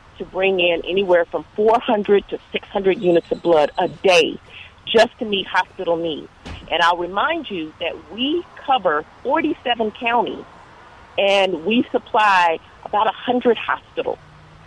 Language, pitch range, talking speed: English, 175-225 Hz, 135 wpm